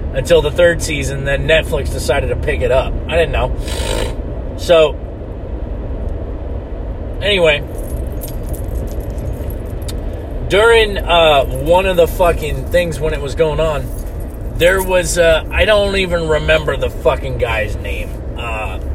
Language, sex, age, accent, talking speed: English, male, 30-49, American, 125 wpm